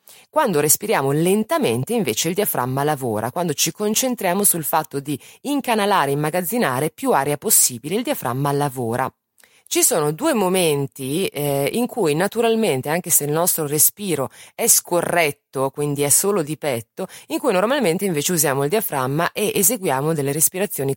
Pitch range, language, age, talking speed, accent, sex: 130-190 Hz, Italian, 30-49, 150 wpm, native, female